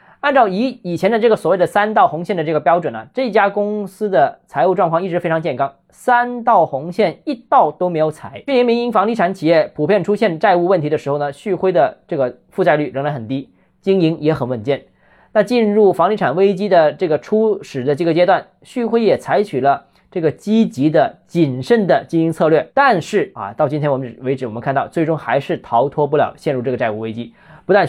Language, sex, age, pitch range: Chinese, male, 20-39, 145-210 Hz